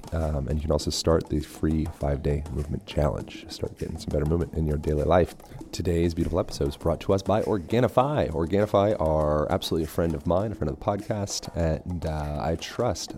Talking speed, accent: 205 wpm, American